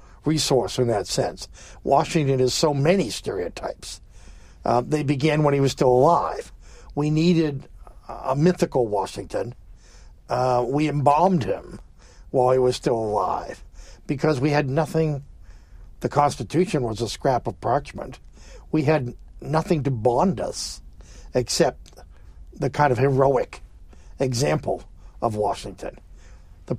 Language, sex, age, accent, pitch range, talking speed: English, male, 60-79, American, 115-150 Hz, 130 wpm